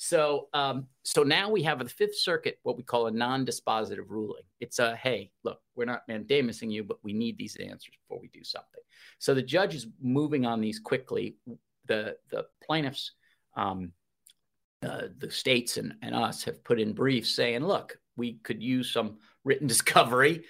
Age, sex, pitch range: 50-69, male, 115-155 Hz